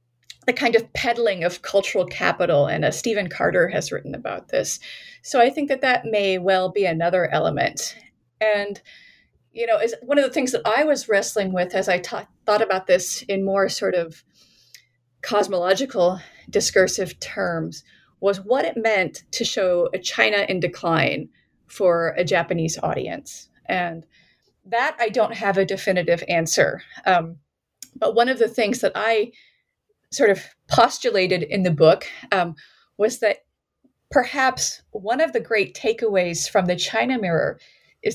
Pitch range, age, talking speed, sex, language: 180-235 Hz, 30-49, 160 wpm, female, English